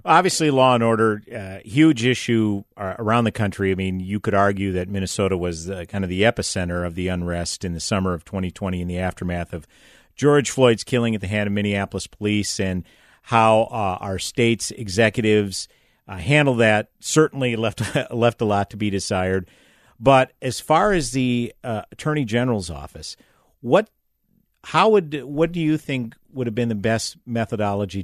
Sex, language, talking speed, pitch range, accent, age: male, English, 180 wpm, 95-120 Hz, American, 50-69